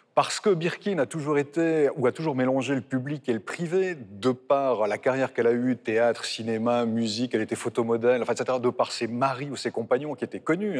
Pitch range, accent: 120-165 Hz, French